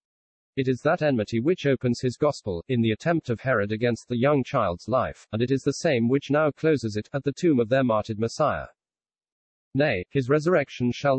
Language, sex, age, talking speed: English, male, 40-59, 205 wpm